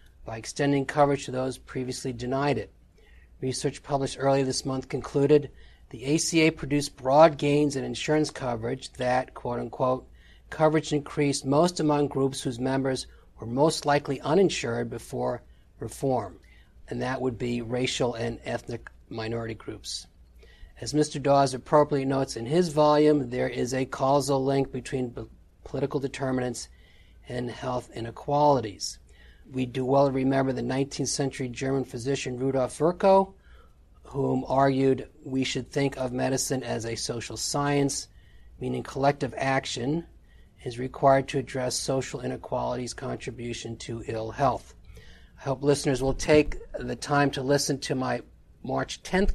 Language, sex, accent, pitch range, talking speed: English, male, American, 120-140 Hz, 135 wpm